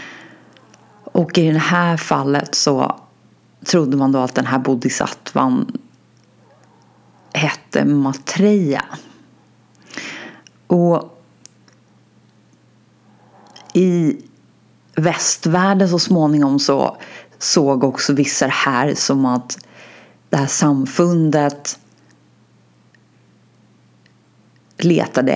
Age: 30-49